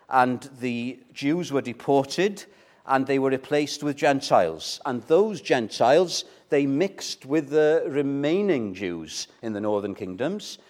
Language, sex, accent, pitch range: English, male, British, 130-170 Hz